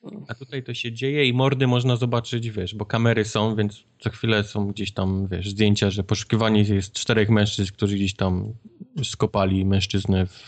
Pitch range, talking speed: 100-120 Hz, 180 wpm